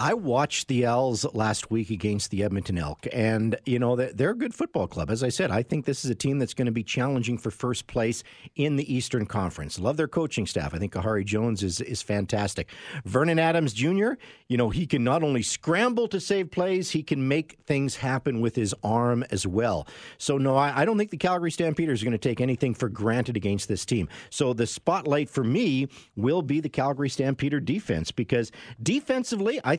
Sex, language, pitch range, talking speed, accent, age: male, English, 115-160 Hz, 215 wpm, American, 50-69